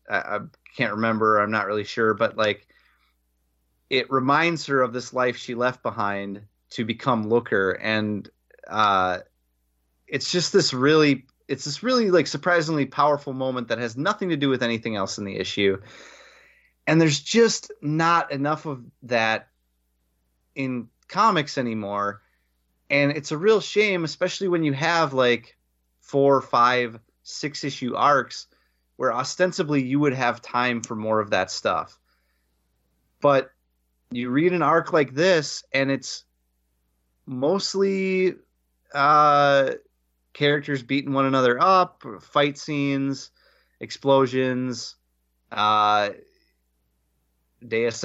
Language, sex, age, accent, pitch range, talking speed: English, male, 30-49, American, 100-145 Hz, 125 wpm